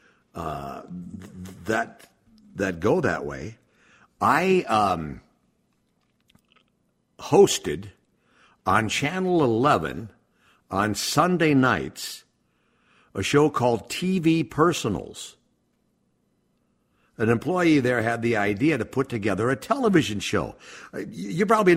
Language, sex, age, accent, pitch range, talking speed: English, male, 60-79, American, 110-170 Hz, 95 wpm